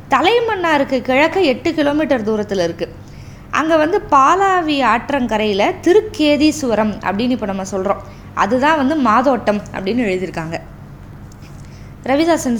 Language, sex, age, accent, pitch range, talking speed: Tamil, female, 20-39, native, 215-300 Hz, 100 wpm